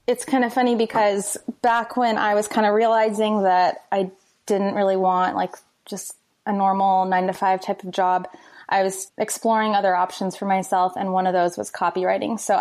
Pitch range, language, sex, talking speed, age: 185-215 Hz, English, female, 195 wpm, 20-39